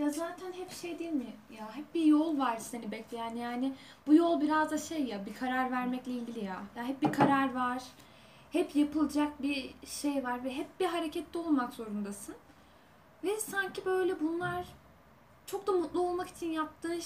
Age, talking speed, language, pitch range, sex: 10-29, 180 wpm, Turkish, 245-325 Hz, female